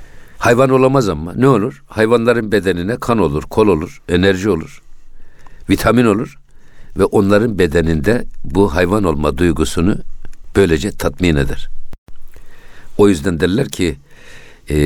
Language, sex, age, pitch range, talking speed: Turkish, male, 60-79, 75-110 Hz, 120 wpm